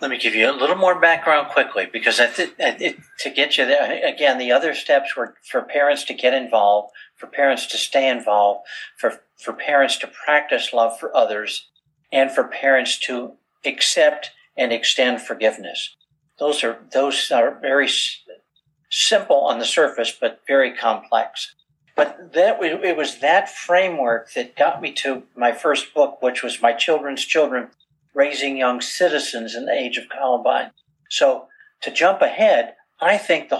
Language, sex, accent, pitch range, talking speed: English, male, American, 125-150 Hz, 165 wpm